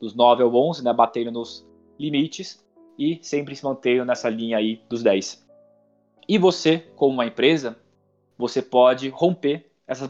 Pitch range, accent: 115-145 Hz, Brazilian